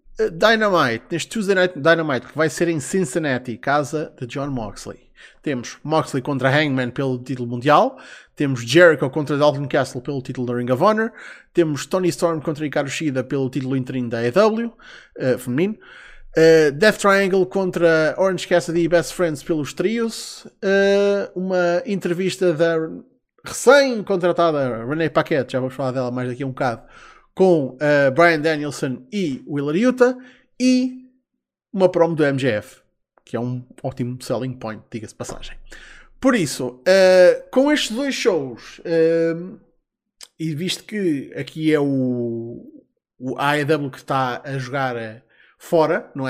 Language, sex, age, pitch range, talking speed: Portuguese, male, 20-39, 130-180 Hz, 145 wpm